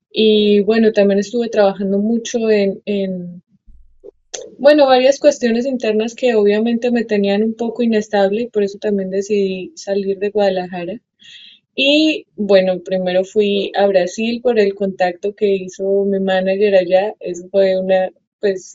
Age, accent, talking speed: 20-39, Colombian, 145 wpm